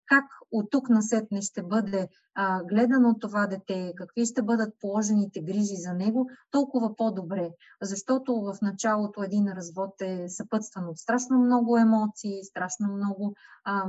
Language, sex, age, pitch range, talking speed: Bulgarian, female, 20-39, 195-250 Hz, 145 wpm